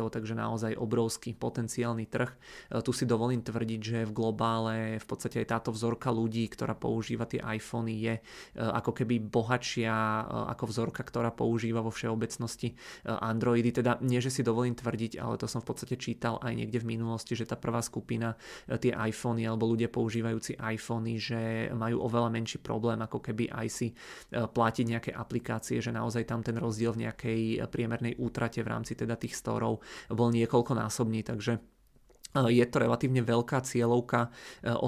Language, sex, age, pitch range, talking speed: Czech, male, 30-49, 115-120 Hz, 160 wpm